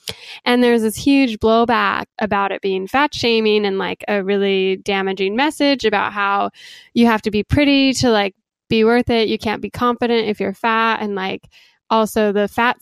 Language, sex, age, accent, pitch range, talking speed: English, female, 10-29, American, 205-245 Hz, 185 wpm